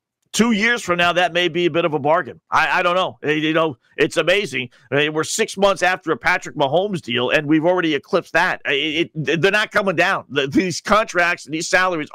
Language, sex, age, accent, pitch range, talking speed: English, male, 50-69, American, 145-185 Hz, 230 wpm